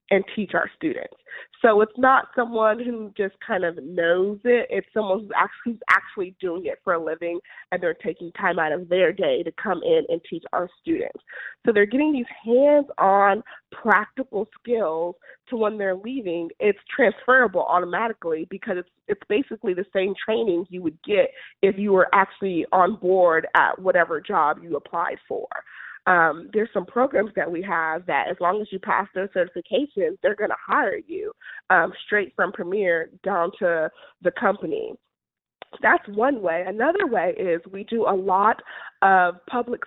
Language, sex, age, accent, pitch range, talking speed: English, female, 20-39, American, 180-245 Hz, 170 wpm